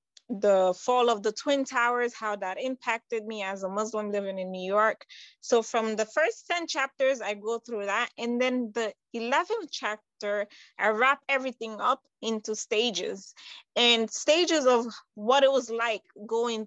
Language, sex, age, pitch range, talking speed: English, female, 20-39, 210-265 Hz, 165 wpm